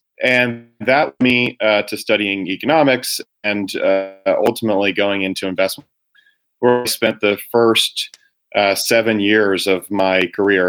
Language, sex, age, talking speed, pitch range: English, male, 30-49, 140 wpm, 95-110 Hz